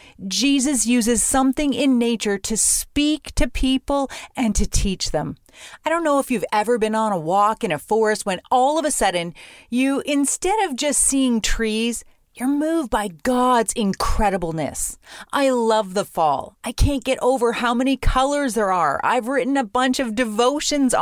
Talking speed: 175 wpm